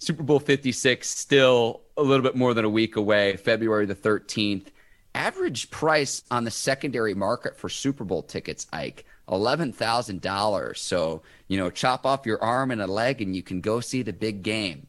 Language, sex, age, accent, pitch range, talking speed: English, male, 30-49, American, 110-145 Hz, 180 wpm